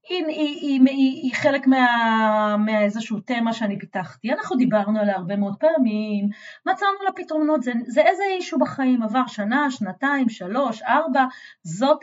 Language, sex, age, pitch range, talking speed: Hebrew, female, 30-49, 210-285 Hz, 155 wpm